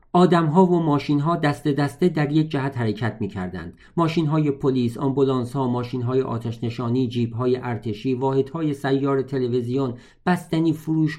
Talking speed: 150 wpm